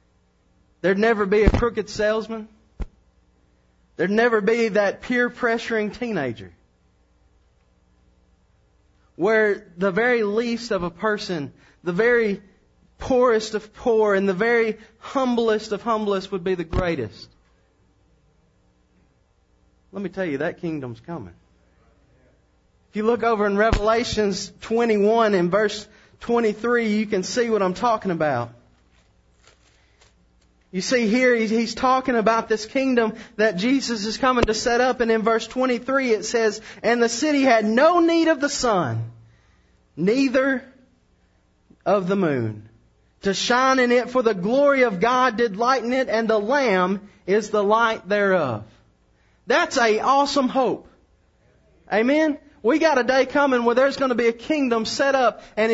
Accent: American